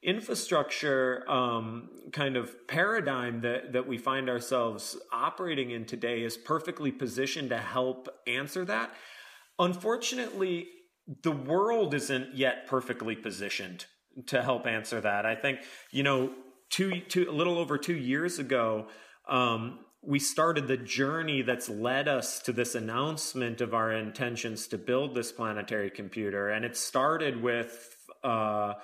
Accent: American